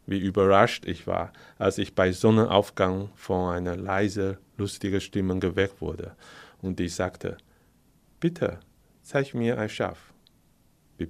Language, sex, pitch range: Chinese, male, 95-110 Hz